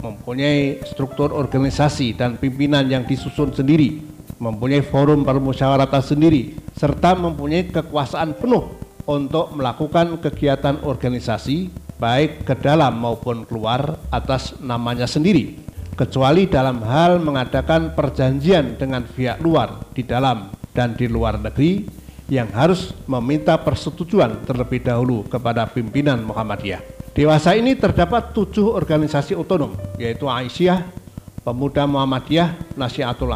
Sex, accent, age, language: male, native, 50-69, Indonesian